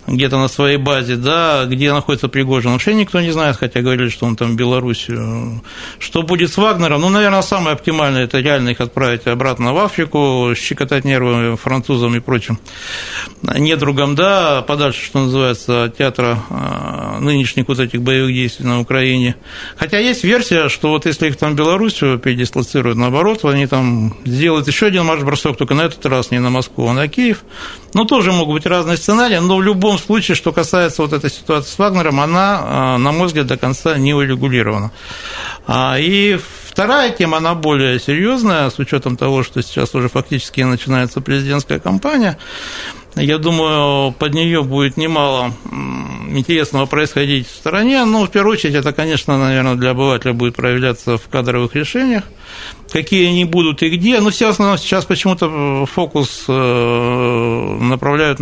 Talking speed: 165 wpm